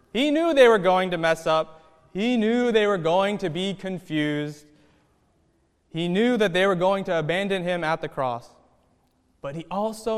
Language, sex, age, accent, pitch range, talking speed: English, male, 20-39, American, 155-210 Hz, 185 wpm